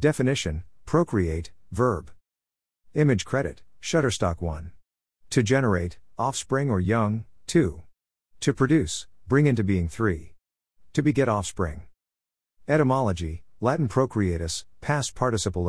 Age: 50-69